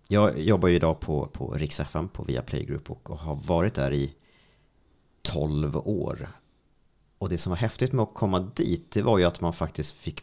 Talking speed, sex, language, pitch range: 200 wpm, male, Swedish, 75-105 Hz